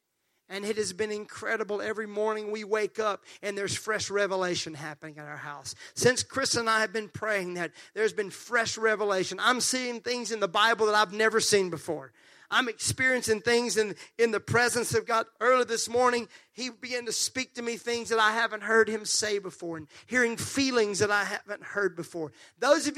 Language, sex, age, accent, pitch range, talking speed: English, male, 40-59, American, 180-245 Hz, 200 wpm